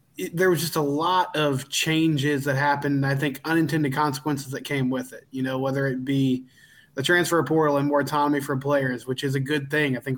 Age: 20-39